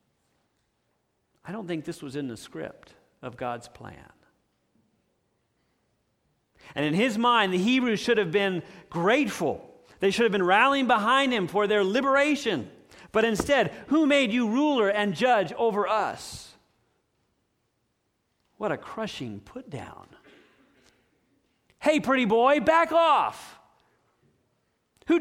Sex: male